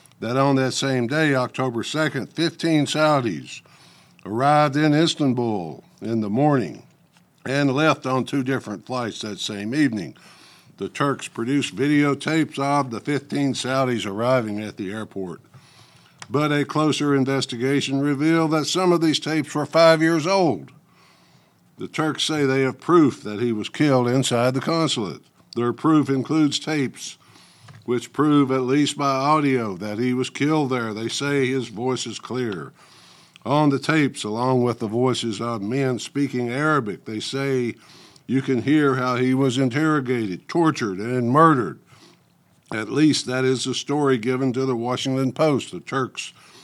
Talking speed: 155 wpm